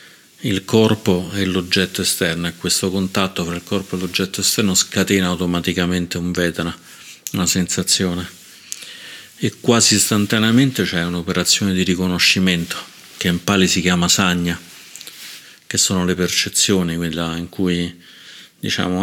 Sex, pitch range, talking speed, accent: male, 90-100 Hz, 130 wpm, native